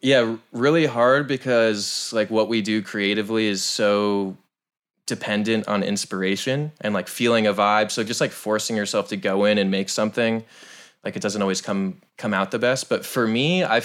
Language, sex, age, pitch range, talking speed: English, male, 20-39, 100-115 Hz, 185 wpm